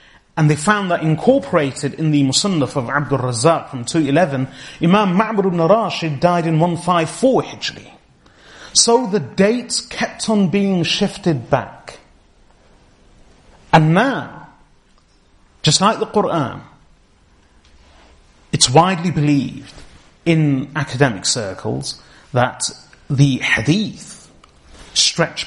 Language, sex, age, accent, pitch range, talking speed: English, male, 30-49, British, 120-180 Hz, 105 wpm